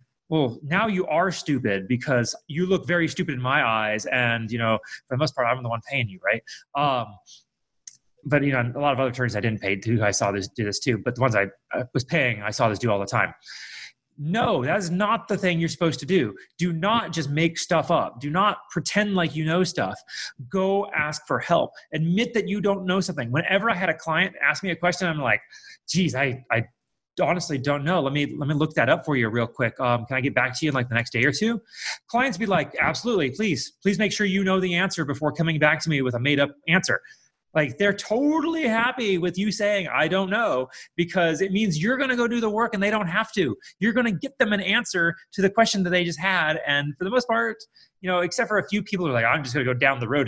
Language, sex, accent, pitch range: English, male, American, 130-195 Hz